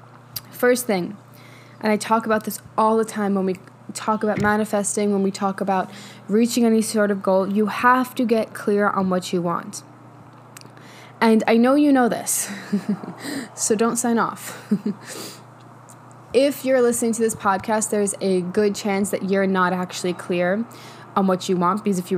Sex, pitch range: female, 185-220 Hz